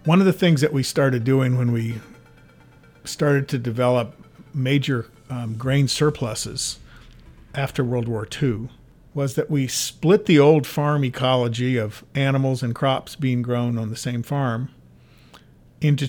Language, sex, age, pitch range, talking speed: English, male, 50-69, 120-140 Hz, 150 wpm